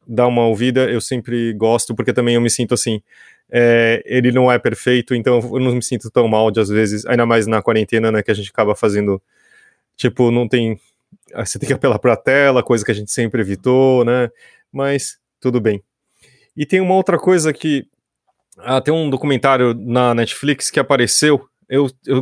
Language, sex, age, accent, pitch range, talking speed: Portuguese, male, 20-39, Brazilian, 120-150 Hz, 195 wpm